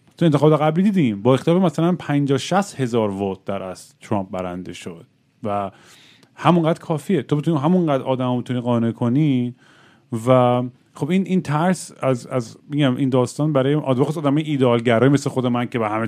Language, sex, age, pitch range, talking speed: Persian, male, 30-49, 115-145 Hz, 185 wpm